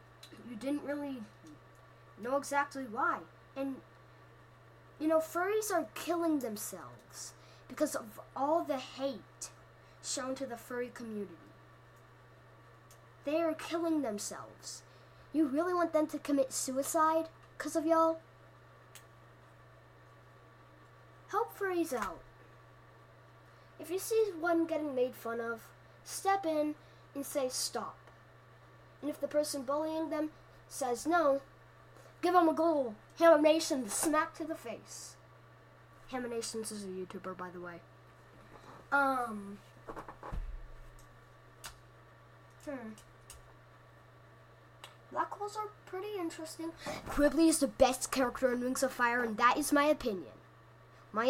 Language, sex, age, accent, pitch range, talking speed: English, female, 10-29, American, 240-320 Hz, 120 wpm